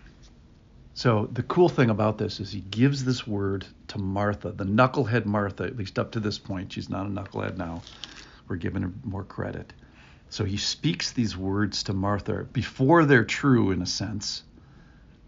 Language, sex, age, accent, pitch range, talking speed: English, male, 50-69, American, 100-120 Hz, 175 wpm